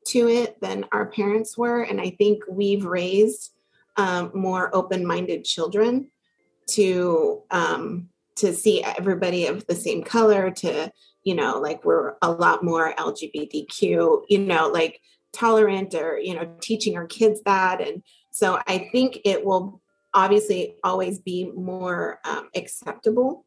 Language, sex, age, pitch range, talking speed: Swahili, female, 30-49, 180-225 Hz, 145 wpm